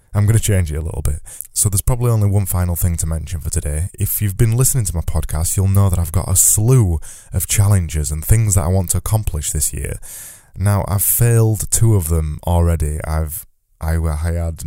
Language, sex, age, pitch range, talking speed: English, male, 20-39, 80-100 Hz, 225 wpm